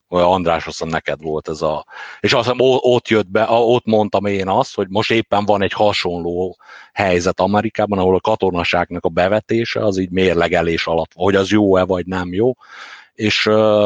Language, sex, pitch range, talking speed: Hungarian, male, 90-110 Hz, 180 wpm